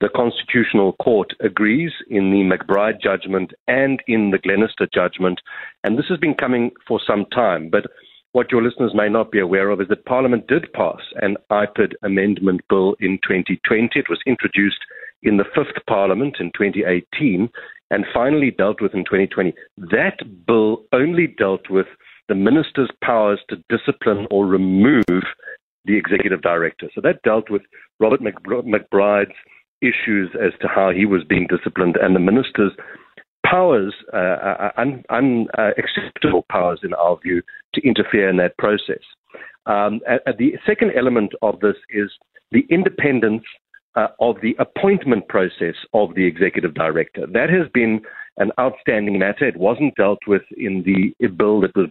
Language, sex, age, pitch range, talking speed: English, male, 50-69, 95-125 Hz, 155 wpm